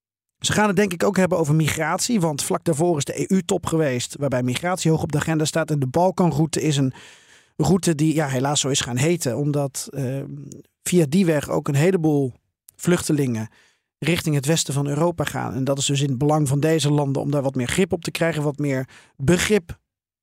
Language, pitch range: Dutch, 135-175 Hz